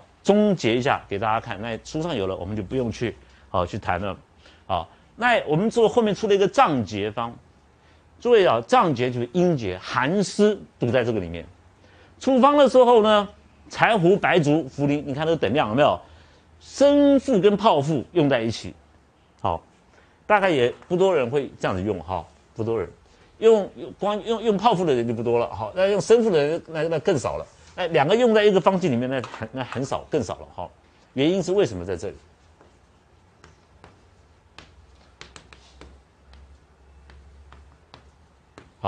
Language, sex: Chinese, male